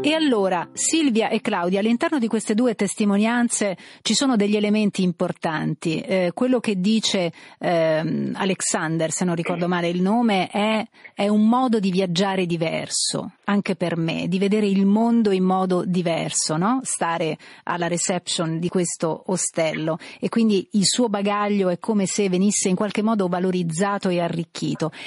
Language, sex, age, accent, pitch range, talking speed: Italian, female, 40-59, native, 180-220 Hz, 160 wpm